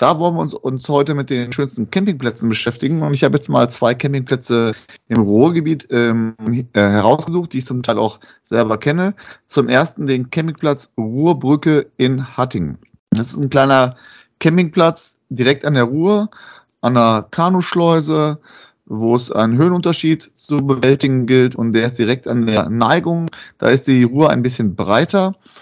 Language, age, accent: German, 30-49, German